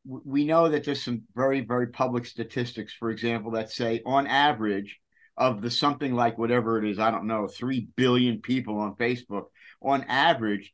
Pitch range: 115-145 Hz